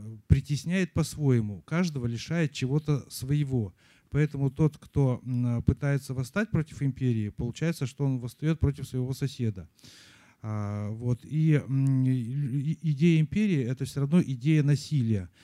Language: Russian